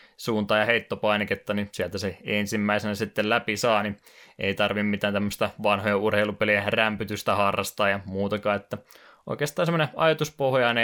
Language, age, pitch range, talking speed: Finnish, 20-39, 100-115 Hz, 140 wpm